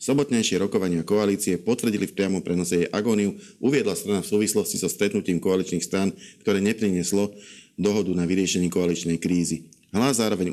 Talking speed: 150 wpm